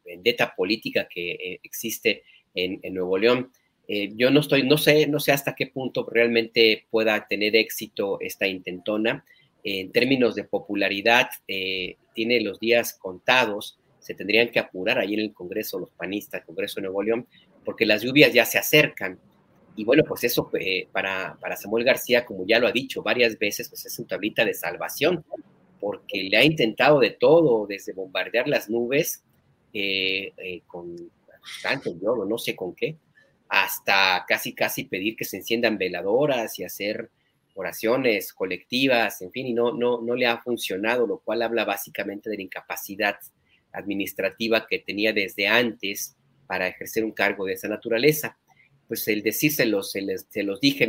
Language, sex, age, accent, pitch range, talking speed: Spanish, male, 40-59, Mexican, 100-130 Hz, 170 wpm